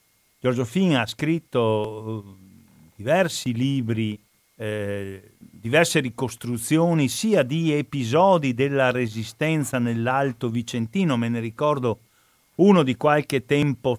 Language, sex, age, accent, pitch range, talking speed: Italian, male, 50-69, native, 110-145 Hz, 100 wpm